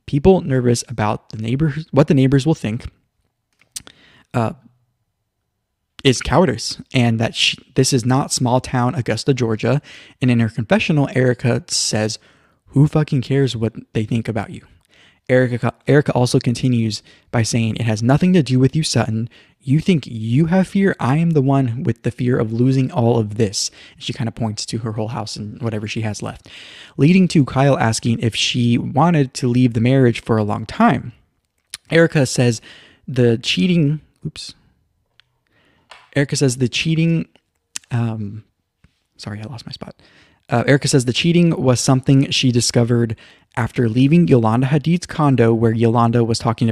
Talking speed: 165 wpm